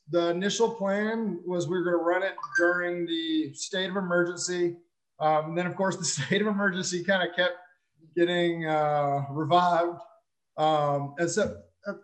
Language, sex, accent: English, male, American